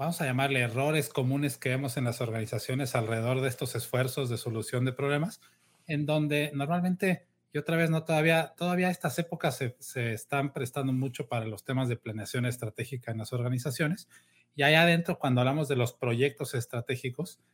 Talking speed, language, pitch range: 180 wpm, Spanish, 125-155 Hz